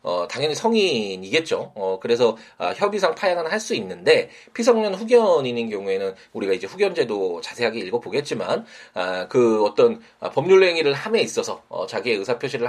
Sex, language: male, Korean